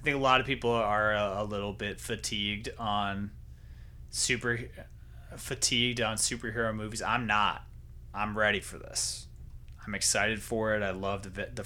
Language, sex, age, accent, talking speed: English, male, 20-39, American, 155 wpm